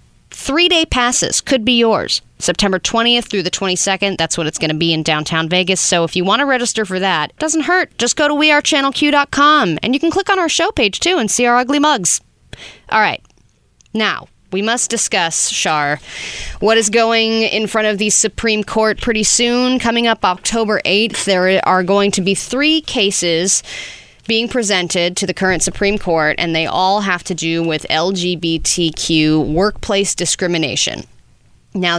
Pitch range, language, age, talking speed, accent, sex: 165-225 Hz, English, 30-49, 180 wpm, American, female